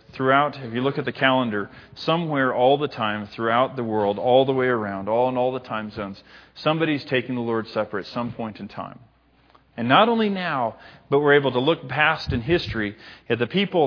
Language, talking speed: English, 210 wpm